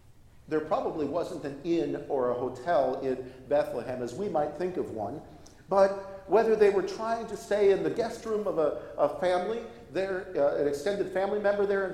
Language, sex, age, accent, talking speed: English, male, 50-69, American, 195 wpm